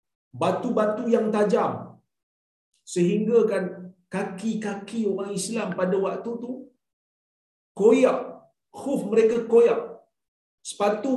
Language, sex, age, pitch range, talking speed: Malayalam, male, 50-69, 180-225 Hz, 85 wpm